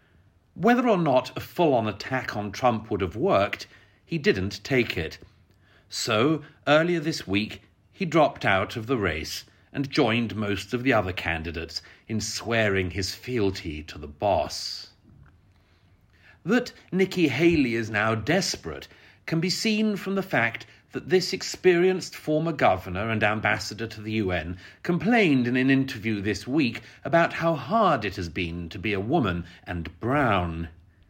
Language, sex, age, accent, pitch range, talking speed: English, male, 40-59, British, 95-150 Hz, 150 wpm